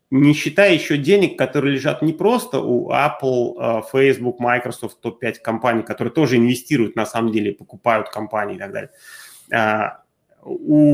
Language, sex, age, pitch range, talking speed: Russian, male, 30-49, 120-160 Hz, 145 wpm